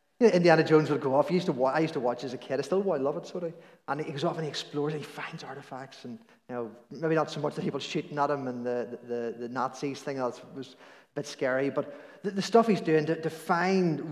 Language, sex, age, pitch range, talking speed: English, male, 30-49, 140-175 Hz, 260 wpm